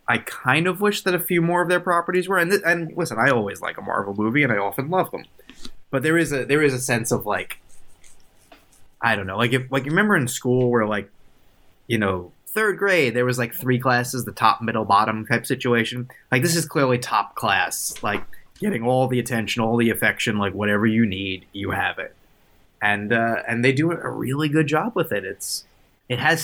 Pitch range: 105-145 Hz